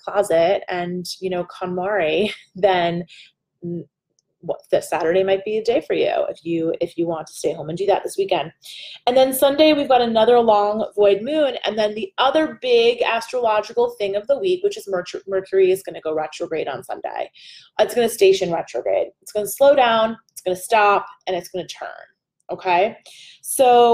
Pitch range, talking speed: 185-255 Hz, 200 wpm